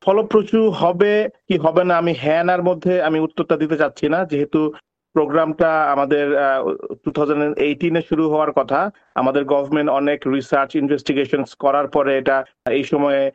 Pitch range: 150-170 Hz